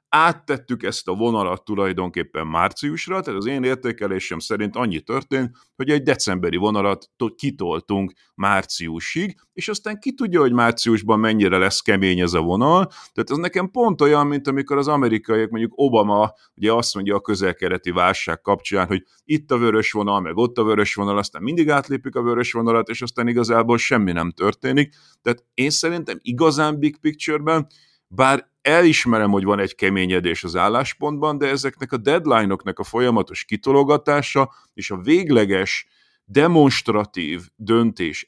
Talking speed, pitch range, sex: 150 wpm, 100-145 Hz, male